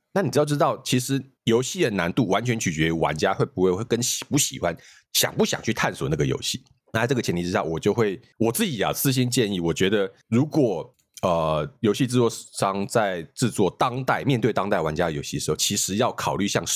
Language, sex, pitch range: Chinese, male, 90-135 Hz